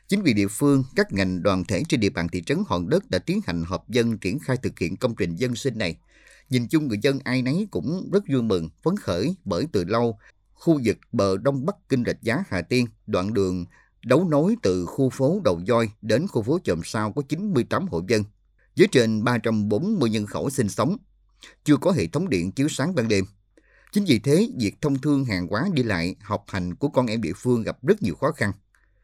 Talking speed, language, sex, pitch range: 225 wpm, Vietnamese, male, 95-130 Hz